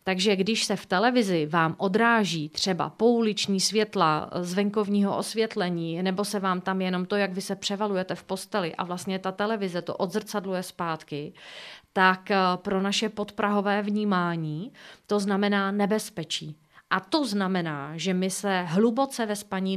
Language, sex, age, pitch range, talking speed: Czech, female, 30-49, 180-225 Hz, 150 wpm